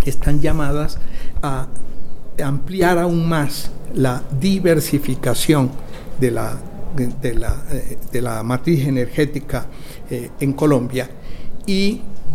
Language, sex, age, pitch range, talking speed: Spanish, male, 60-79, 130-155 Hz, 105 wpm